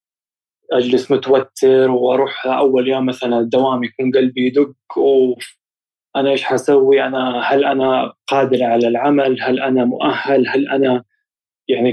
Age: 20-39